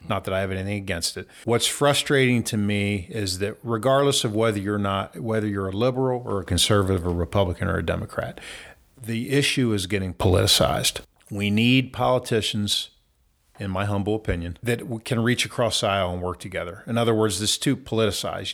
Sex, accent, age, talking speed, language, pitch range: male, American, 40-59, 180 wpm, English, 95-115 Hz